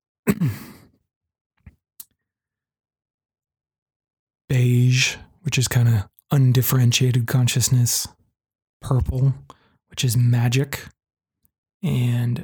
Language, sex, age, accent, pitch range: English, male, 20-39, American, 120-130 Hz